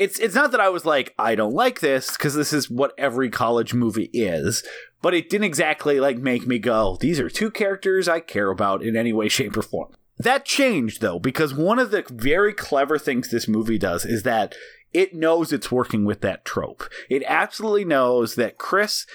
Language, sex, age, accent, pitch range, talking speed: English, male, 30-49, American, 120-180 Hz, 210 wpm